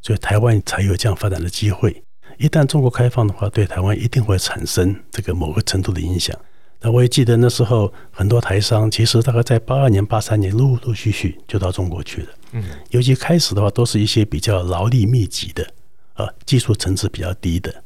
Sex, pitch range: male, 95-120 Hz